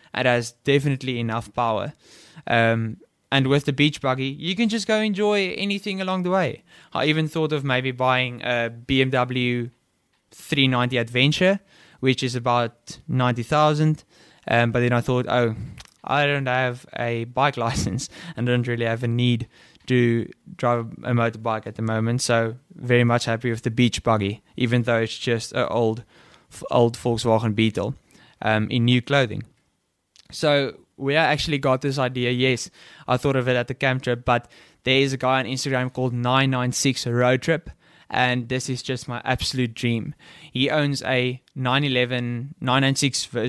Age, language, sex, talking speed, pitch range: 10-29, English, male, 160 wpm, 120-135 Hz